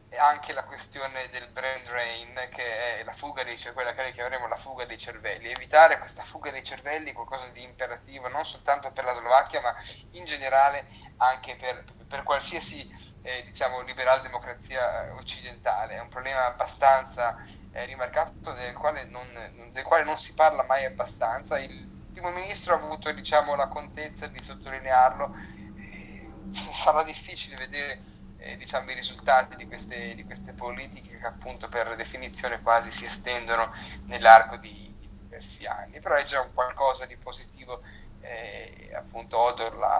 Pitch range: 115-135 Hz